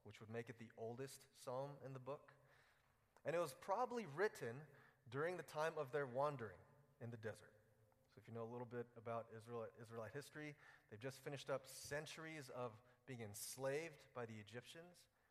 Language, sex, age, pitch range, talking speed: English, male, 30-49, 115-140 Hz, 180 wpm